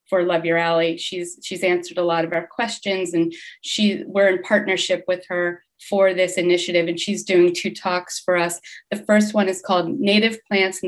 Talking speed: 205 wpm